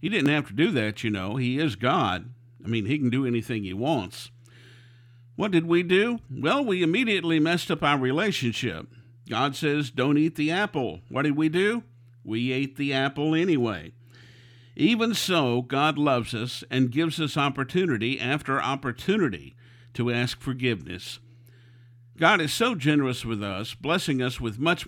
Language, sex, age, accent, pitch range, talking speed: English, male, 50-69, American, 120-150 Hz, 165 wpm